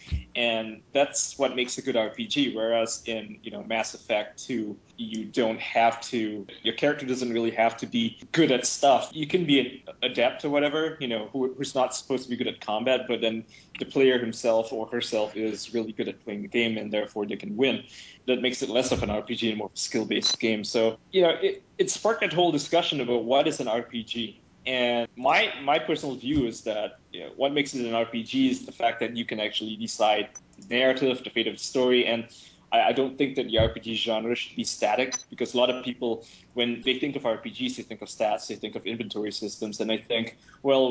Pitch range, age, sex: 110-130 Hz, 20-39, male